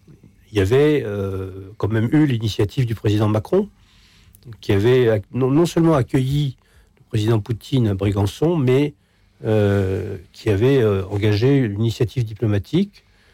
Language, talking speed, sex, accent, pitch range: French, 140 wpm, male, French, 105-135 Hz